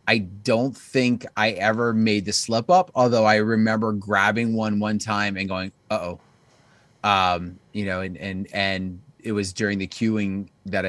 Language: English